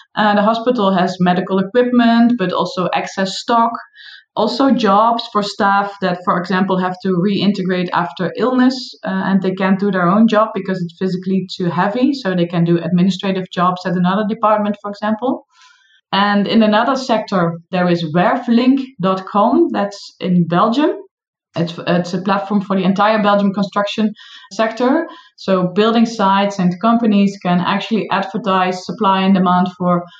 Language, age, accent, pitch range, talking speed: English, 20-39, Dutch, 185-230 Hz, 155 wpm